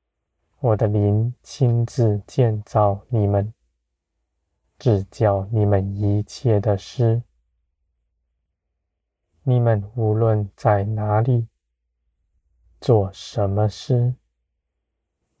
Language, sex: Chinese, male